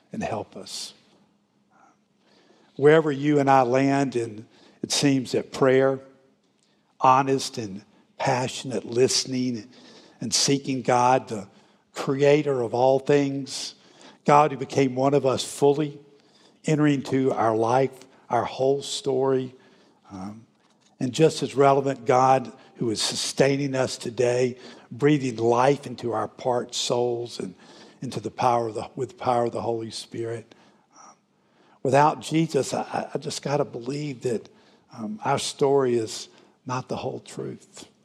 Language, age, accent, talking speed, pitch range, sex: English, 50-69, American, 135 wpm, 115-140 Hz, male